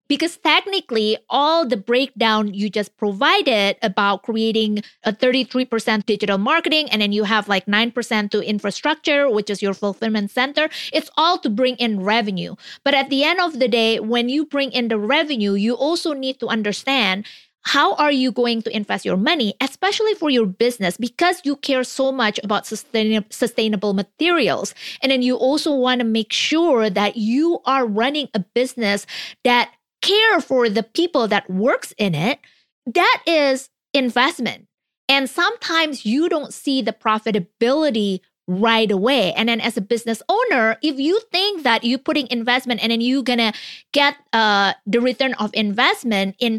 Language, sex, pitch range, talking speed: English, female, 215-285 Hz, 165 wpm